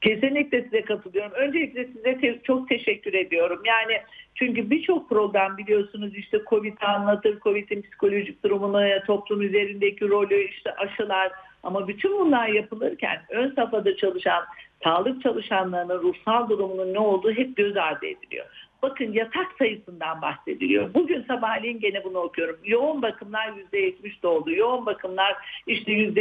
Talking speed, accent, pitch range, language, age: 135 wpm, native, 195-275 Hz, Turkish, 50-69